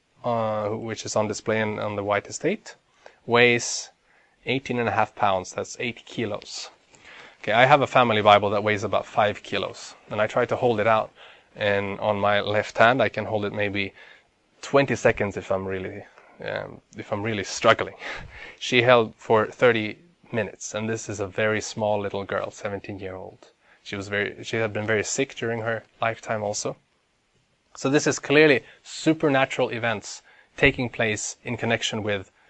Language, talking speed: Danish, 175 wpm